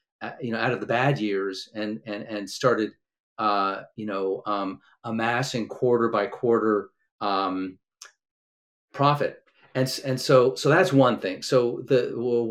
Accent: American